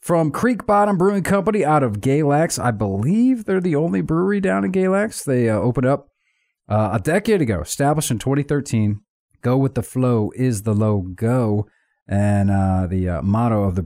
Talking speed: 180 wpm